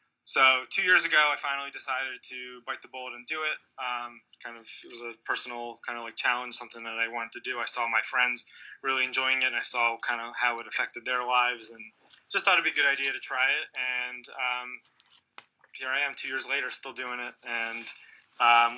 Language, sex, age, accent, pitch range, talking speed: English, male, 20-39, American, 120-130 Hz, 230 wpm